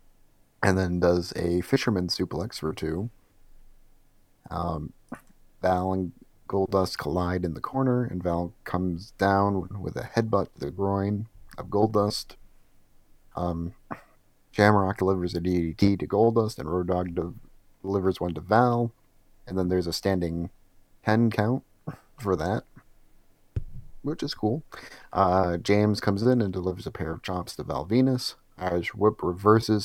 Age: 30-49